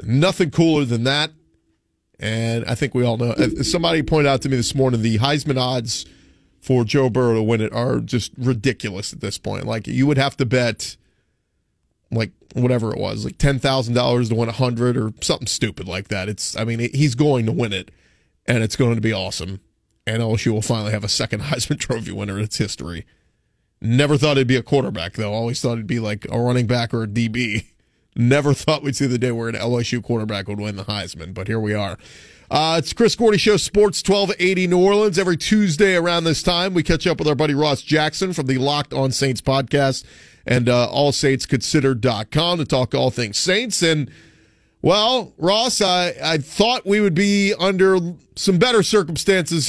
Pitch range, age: 115-165 Hz, 30-49